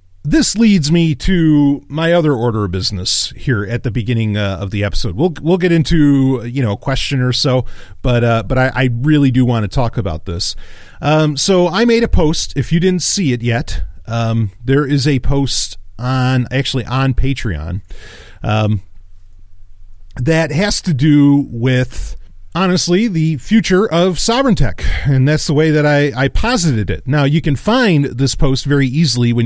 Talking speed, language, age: 185 wpm, English, 40-59